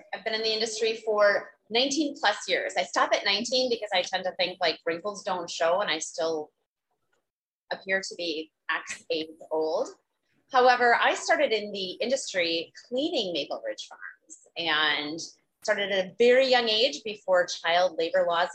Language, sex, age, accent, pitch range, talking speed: English, female, 30-49, American, 170-240 Hz, 170 wpm